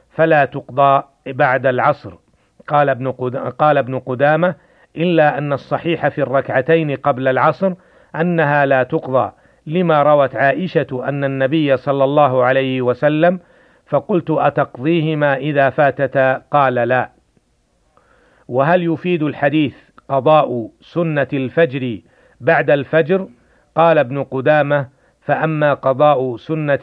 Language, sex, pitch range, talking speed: Arabic, male, 135-155 Hz, 105 wpm